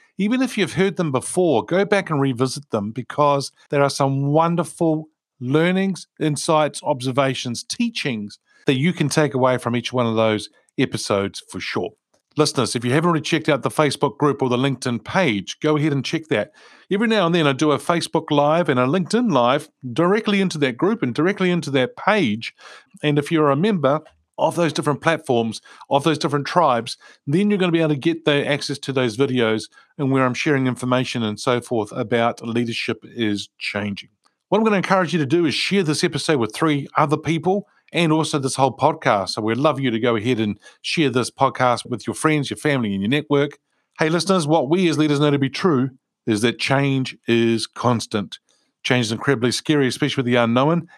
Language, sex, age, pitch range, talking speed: English, male, 50-69, 125-160 Hz, 205 wpm